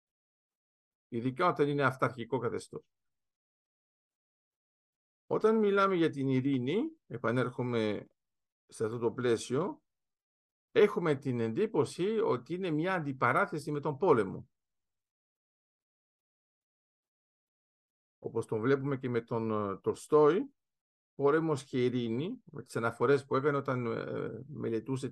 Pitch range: 120-180 Hz